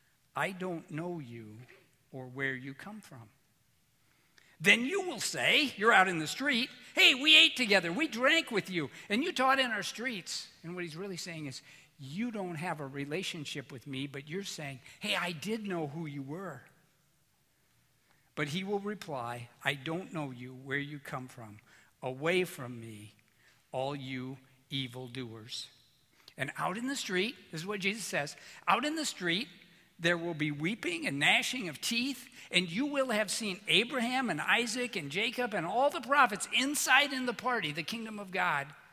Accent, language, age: American, English, 60-79